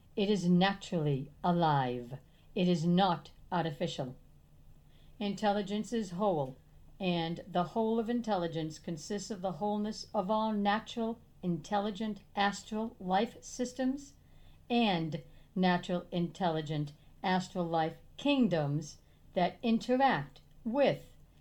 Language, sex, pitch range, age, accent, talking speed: English, female, 160-210 Hz, 60-79, American, 100 wpm